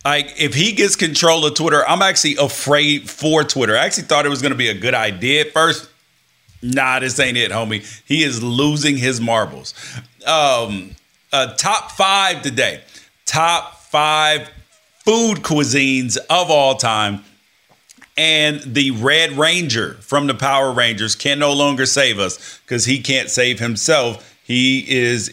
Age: 40-59